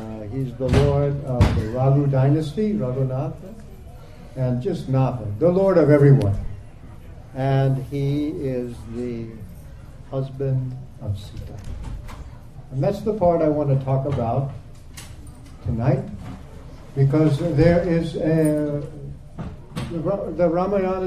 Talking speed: 110 wpm